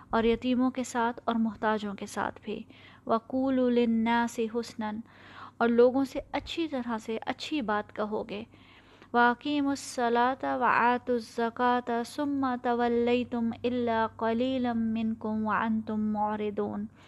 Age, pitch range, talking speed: 20-39, 225-275 Hz, 120 wpm